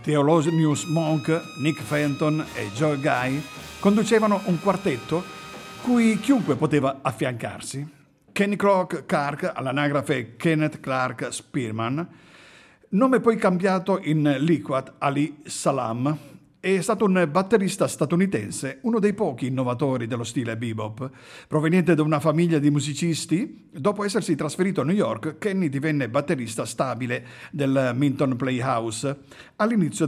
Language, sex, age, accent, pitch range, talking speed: Italian, male, 50-69, native, 130-175 Hz, 120 wpm